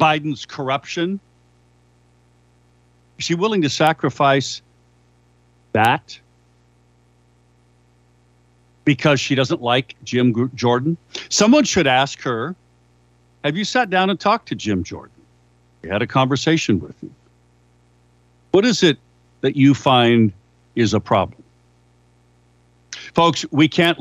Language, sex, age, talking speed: English, male, 60-79, 110 wpm